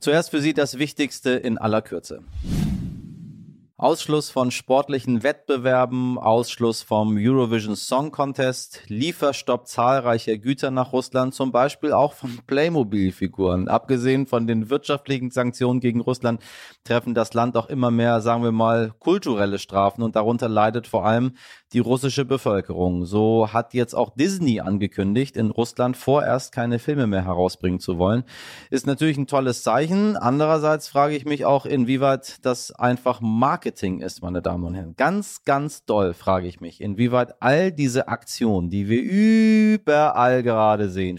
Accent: German